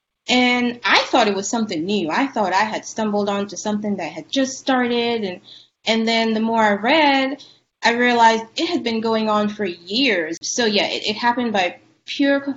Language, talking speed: English, 195 wpm